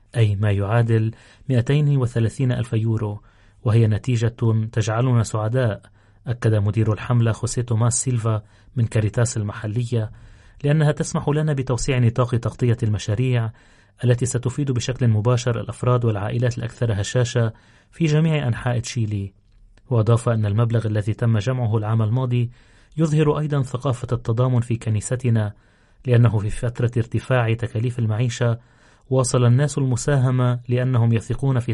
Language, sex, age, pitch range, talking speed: Arabic, male, 30-49, 110-125 Hz, 120 wpm